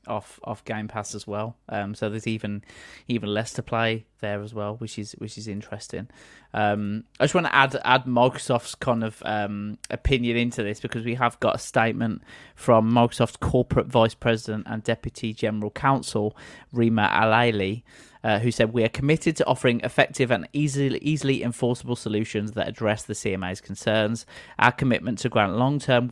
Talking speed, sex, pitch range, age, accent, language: 175 wpm, male, 105-130 Hz, 20-39, British, English